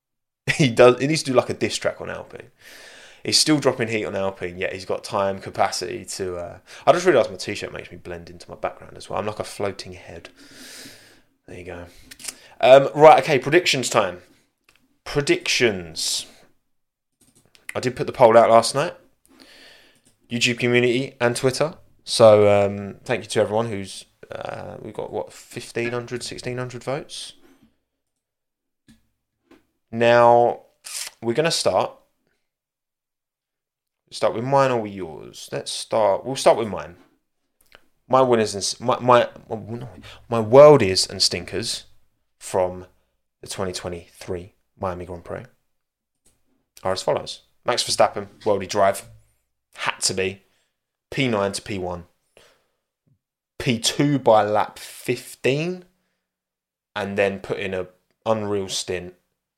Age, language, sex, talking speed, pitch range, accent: 20-39, English, male, 140 wpm, 95-125 Hz, British